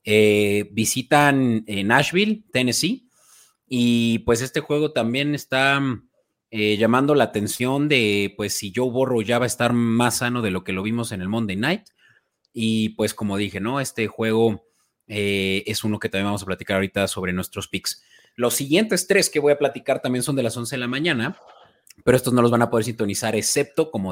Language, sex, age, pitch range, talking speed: Spanish, male, 30-49, 105-125 Hz, 195 wpm